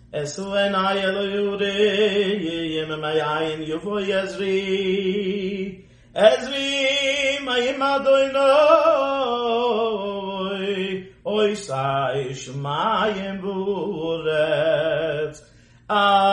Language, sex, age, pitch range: English, male, 40-59, 165-235 Hz